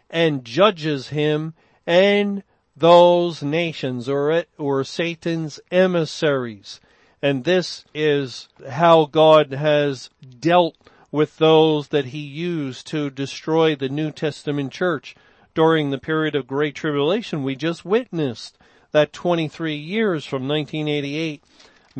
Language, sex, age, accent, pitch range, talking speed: English, male, 40-59, American, 145-175 Hz, 115 wpm